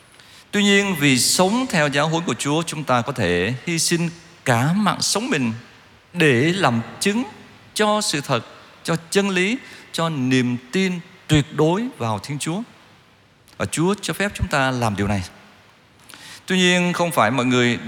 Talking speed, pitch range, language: 170 wpm, 110-165 Hz, Vietnamese